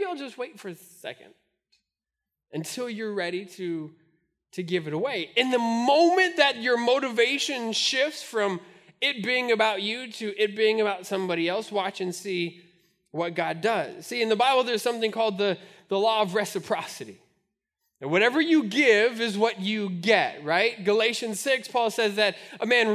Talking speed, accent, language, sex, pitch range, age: 175 wpm, American, English, male, 205-275 Hz, 20-39